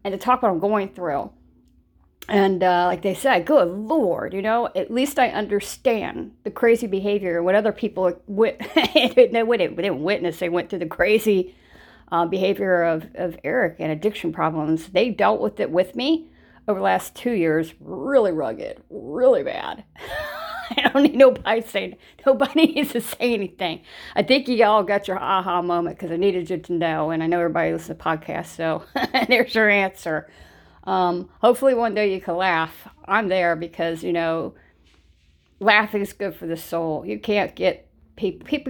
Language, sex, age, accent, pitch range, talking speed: English, female, 40-59, American, 165-220 Hz, 185 wpm